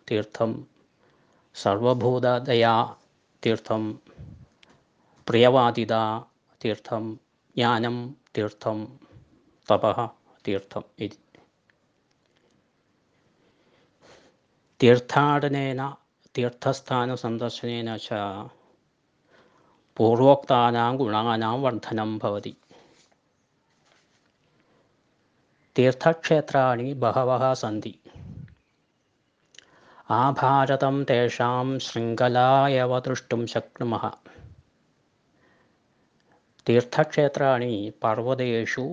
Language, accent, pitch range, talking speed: Malayalam, native, 110-130 Hz, 30 wpm